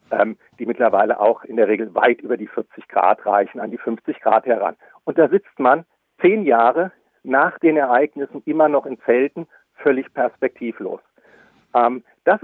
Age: 50-69